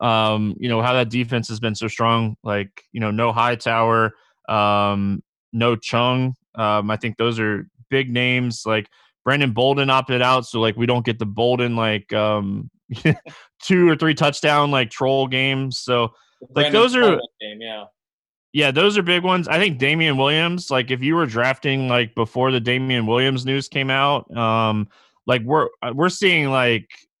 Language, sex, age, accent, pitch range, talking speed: English, male, 20-39, American, 115-140 Hz, 170 wpm